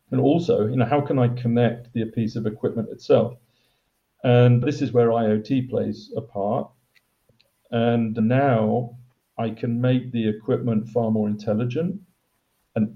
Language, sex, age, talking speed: English, male, 50-69, 140 wpm